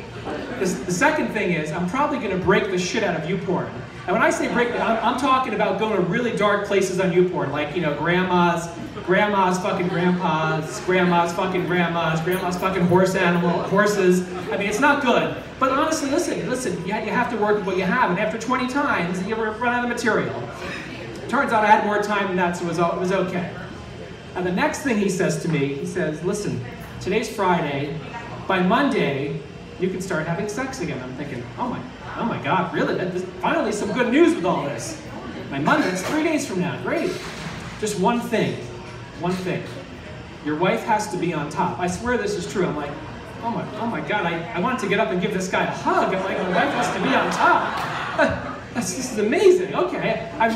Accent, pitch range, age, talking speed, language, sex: American, 180-220 Hz, 30-49, 225 wpm, English, male